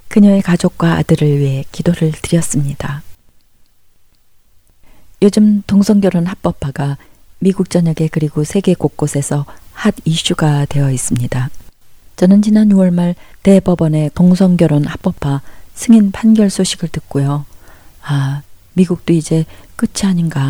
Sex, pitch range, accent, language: female, 145-190 Hz, native, Korean